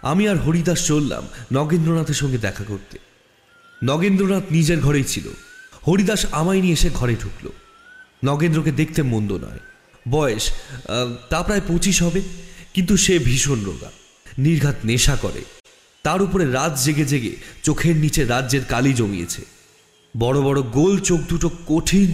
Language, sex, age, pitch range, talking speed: Bengali, male, 30-49, 125-175 Hz, 135 wpm